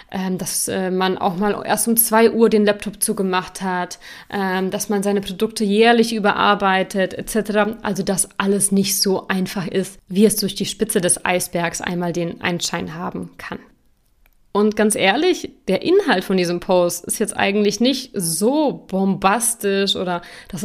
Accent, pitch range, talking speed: German, 190-225 Hz, 155 wpm